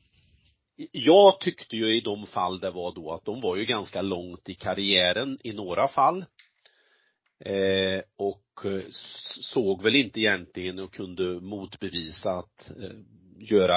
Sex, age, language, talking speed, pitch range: male, 40-59, Swedish, 130 wpm, 95-135 Hz